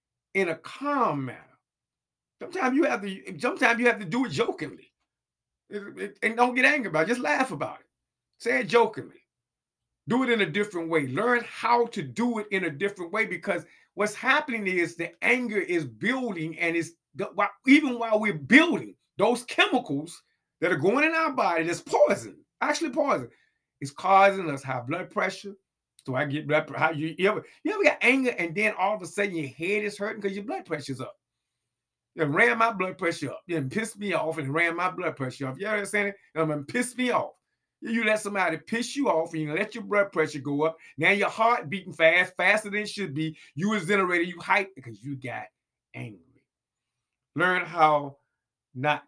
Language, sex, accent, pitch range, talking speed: English, male, American, 155-230 Hz, 195 wpm